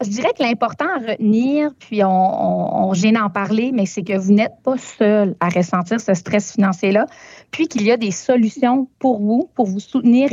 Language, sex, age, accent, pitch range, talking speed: French, female, 30-49, Canadian, 195-245 Hz, 200 wpm